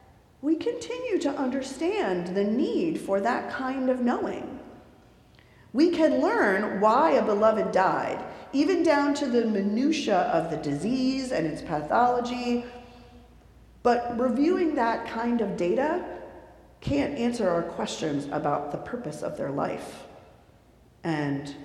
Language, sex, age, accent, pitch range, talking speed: English, female, 40-59, American, 175-260 Hz, 125 wpm